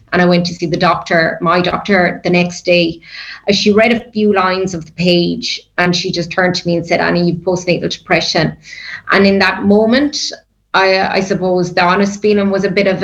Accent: Irish